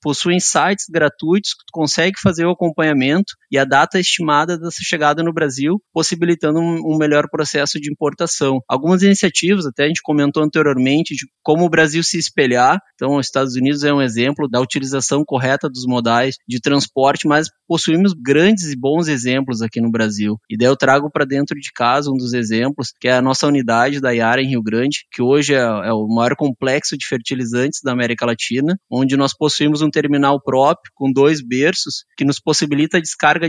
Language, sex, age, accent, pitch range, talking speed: English, male, 20-39, Brazilian, 135-160 Hz, 190 wpm